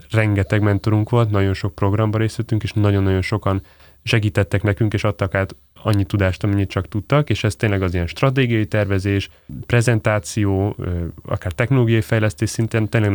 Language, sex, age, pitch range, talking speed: Hungarian, male, 30-49, 90-110 Hz, 150 wpm